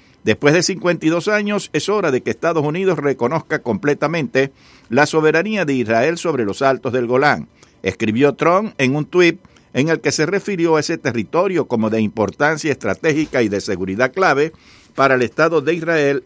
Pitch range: 130-165 Hz